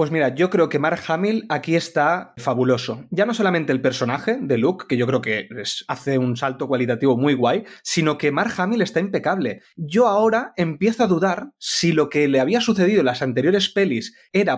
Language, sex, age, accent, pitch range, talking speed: Spanish, male, 20-39, Spanish, 135-190 Hz, 200 wpm